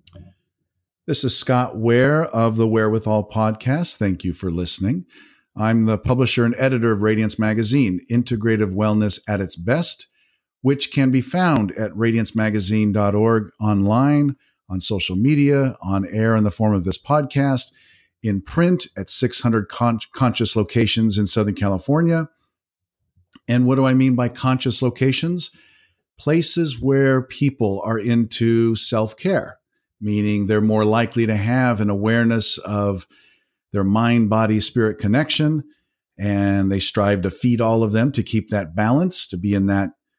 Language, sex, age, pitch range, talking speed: English, male, 50-69, 105-130 Hz, 140 wpm